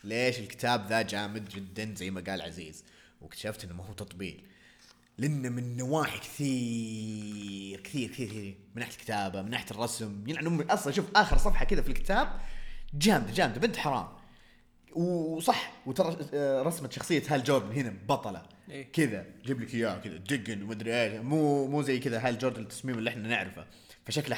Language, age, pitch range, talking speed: Arabic, 30-49, 105-140 Hz, 150 wpm